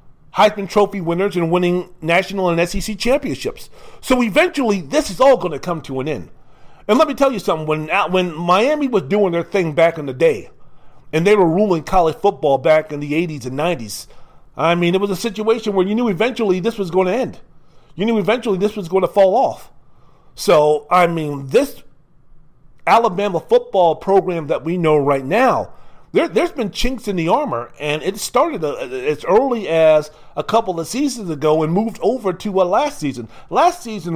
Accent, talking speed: American, 195 wpm